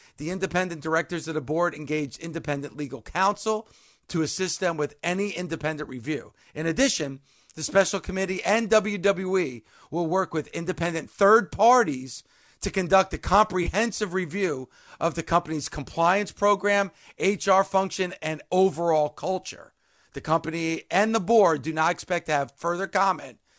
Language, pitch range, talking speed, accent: English, 160-205 Hz, 145 wpm, American